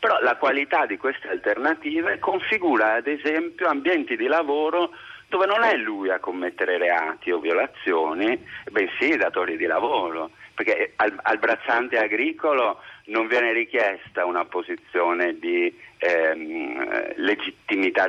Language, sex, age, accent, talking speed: Italian, male, 50-69, native, 130 wpm